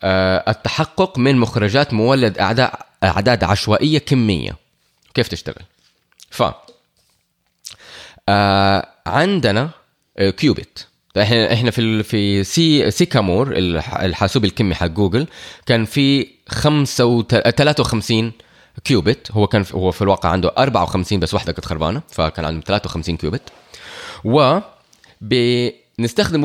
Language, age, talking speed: Arabic, 20-39, 100 wpm